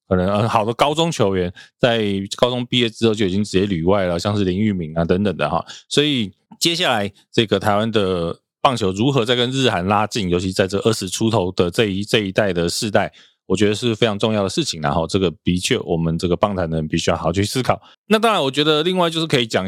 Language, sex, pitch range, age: Chinese, male, 90-115 Hz, 20-39